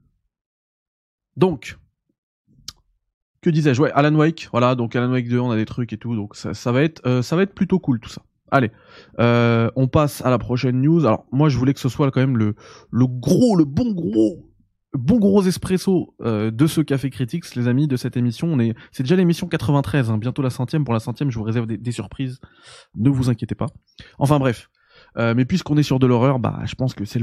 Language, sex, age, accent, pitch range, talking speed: French, male, 20-39, French, 110-140 Hz, 225 wpm